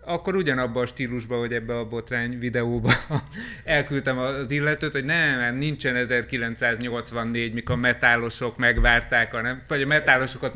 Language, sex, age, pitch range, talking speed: Hungarian, male, 30-49, 120-150 Hz, 135 wpm